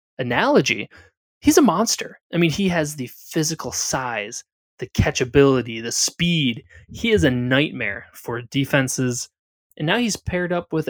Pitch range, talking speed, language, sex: 120-170 Hz, 150 wpm, English, male